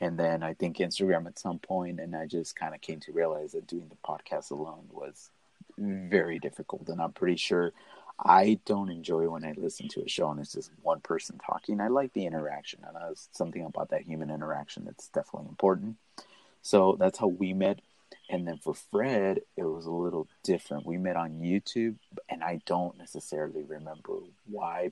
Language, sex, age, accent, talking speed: English, male, 30-49, American, 195 wpm